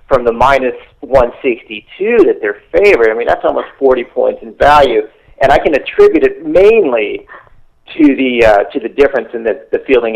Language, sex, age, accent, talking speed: English, male, 40-59, American, 190 wpm